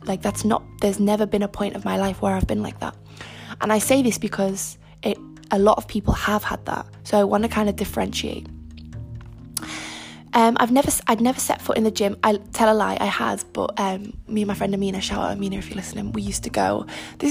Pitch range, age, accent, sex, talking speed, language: 190-225 Hz, 10-29, British, female, 245 wpm, English